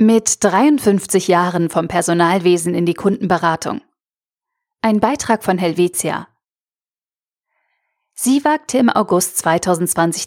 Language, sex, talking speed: German, female, 100 wpm